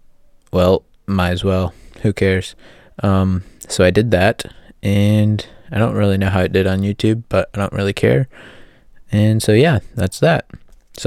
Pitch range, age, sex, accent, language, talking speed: 90-115 Hz, 20-39, male, American, English, 175 wpm